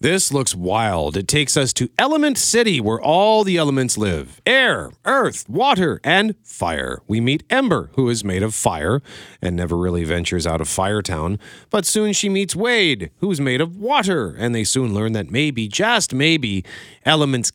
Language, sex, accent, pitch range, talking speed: English, male, American, 100-140 Hz, 180 wpm